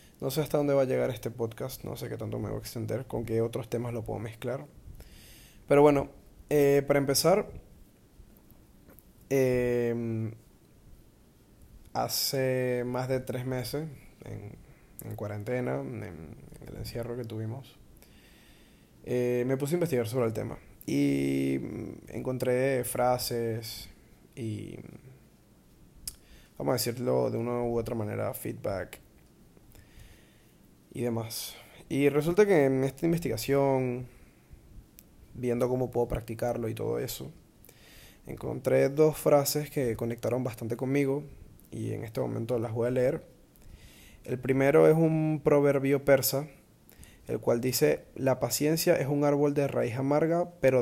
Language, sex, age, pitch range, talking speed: Spanish, male, 20-39, 115-140 Hz, 135 wpm